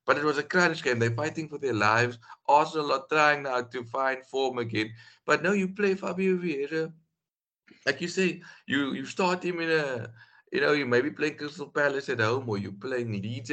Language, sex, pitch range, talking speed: English, male, 115-160 Hz, 215 wpm